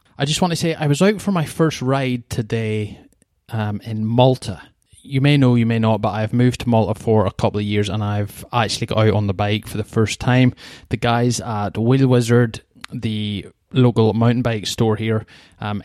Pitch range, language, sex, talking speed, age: 105-120 Hz, English, male, 210 wpm, 20-39